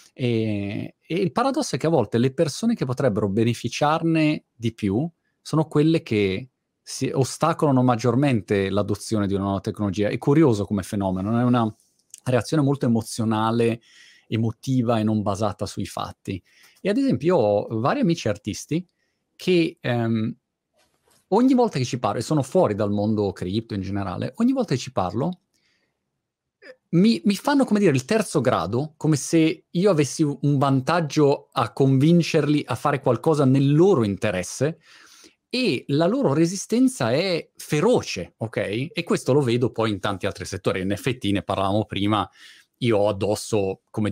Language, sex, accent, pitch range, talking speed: Italian, male, native, 110-150 Hz, 160 wpm